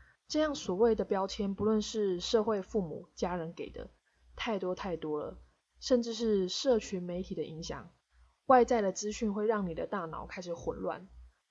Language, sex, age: Chinese, female, 20-39